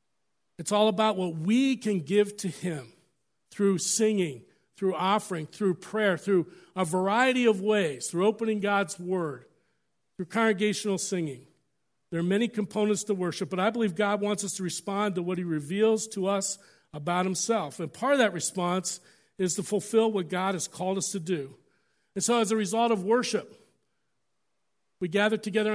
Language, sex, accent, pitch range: English, male, American, 170-205 Hz